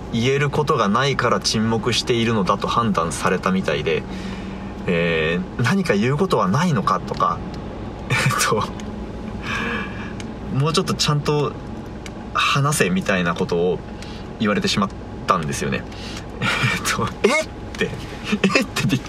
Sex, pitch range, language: male, 100-165 Hz, Japanese